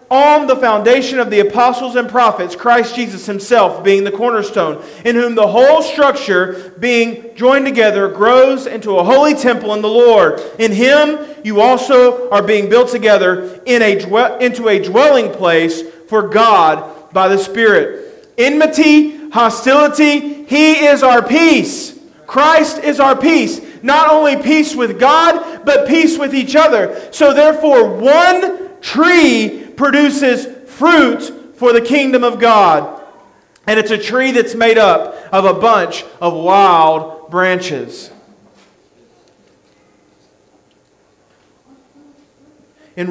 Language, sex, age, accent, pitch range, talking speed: English, male, 40-59, American, 220-285 Hz, 130 wpm